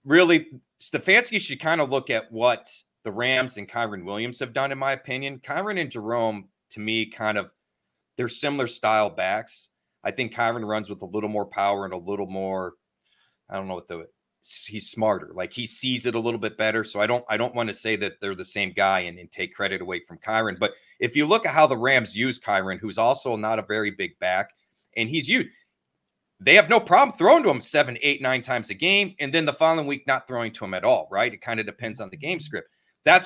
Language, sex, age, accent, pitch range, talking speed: English, male, 30-49, American, 110-140 Hz, 235 wpm